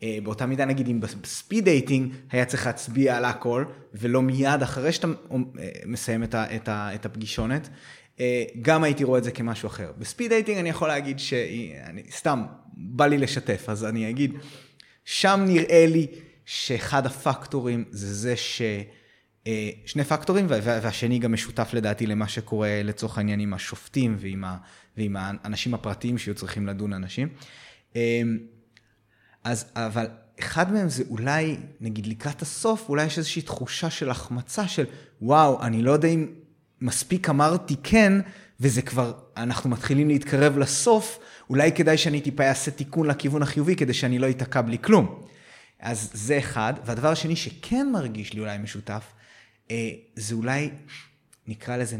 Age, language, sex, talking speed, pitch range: 20-39, Hebrew, male, 140 wpm, 110-145 Hz